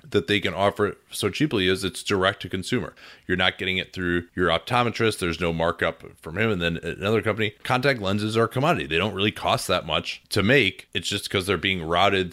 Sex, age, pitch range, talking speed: male, 30-49, 90-110 Hz, 225 wpm